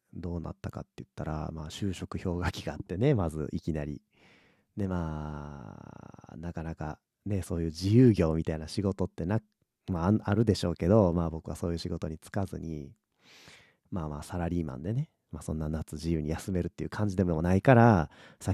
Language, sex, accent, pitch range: Japanese, male, native, 80-100 Hz